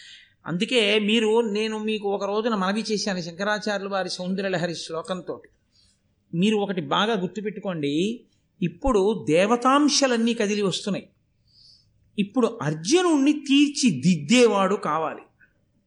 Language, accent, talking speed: Telugu, native, 90 wpm